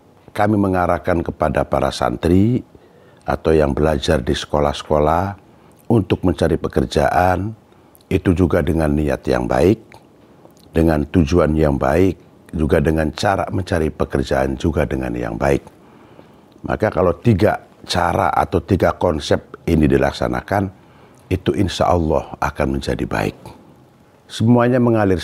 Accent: native